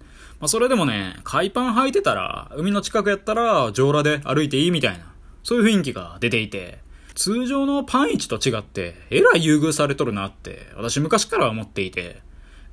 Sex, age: male, 20-39